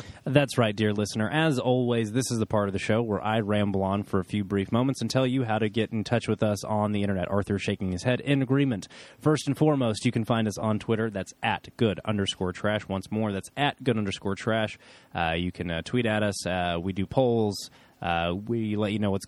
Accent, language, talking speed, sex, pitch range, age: American, English, 245 wpm, male, 95-115 Hz, 20-39